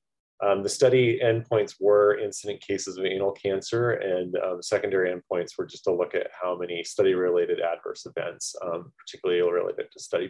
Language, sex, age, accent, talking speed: English, male, 30-49, American, 175 wpm